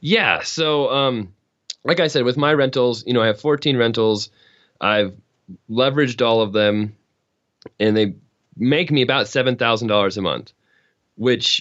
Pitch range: 100-125 Hz